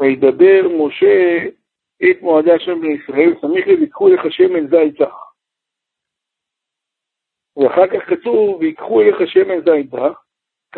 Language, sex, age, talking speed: Hebrew, male, 50-69, 105 wpm